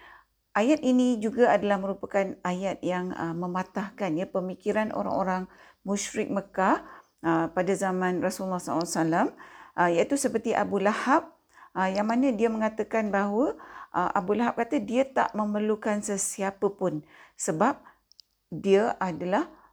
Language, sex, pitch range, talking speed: Malay, female, 170-235 Hz, 125 wpm